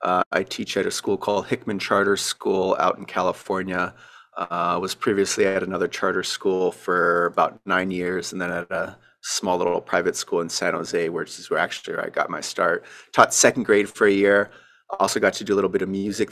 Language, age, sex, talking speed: English, 30-49, male, 215 wpm